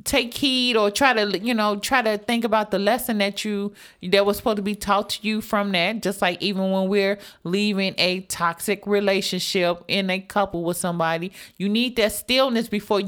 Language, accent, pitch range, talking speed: English, American, 195-240 Hz, 200 wpm